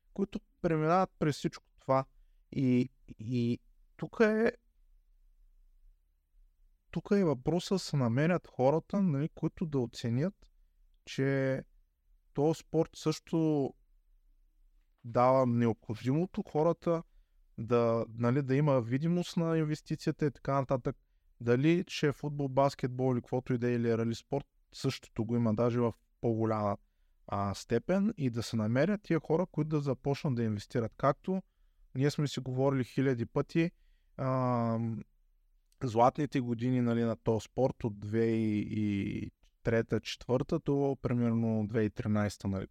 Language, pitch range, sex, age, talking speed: Bulgarian, 110-145 Hz, male, 20-39, 120 wpm